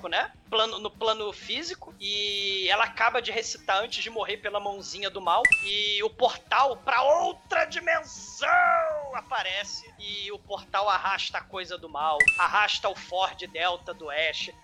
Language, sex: Portuguese, male